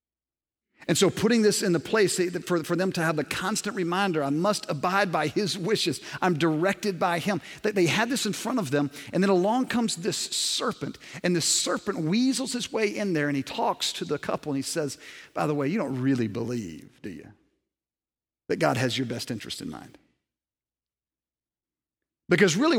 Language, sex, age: English, male, 50-69